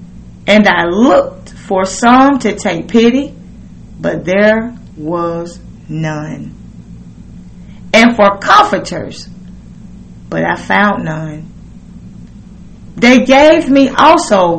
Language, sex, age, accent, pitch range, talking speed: English, female, 30-49, American, 175-250 Hz, 95 wpm